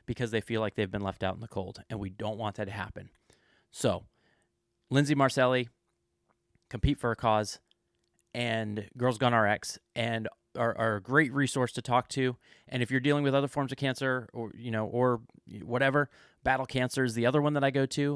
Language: English